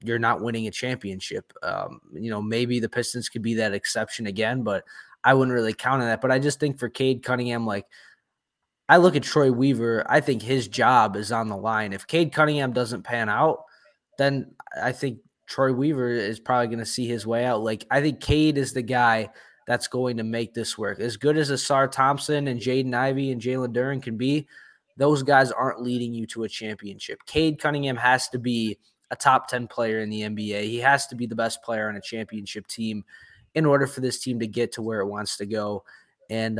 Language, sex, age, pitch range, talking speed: English, male, 20-39, 110-135 Hz, 220 wpm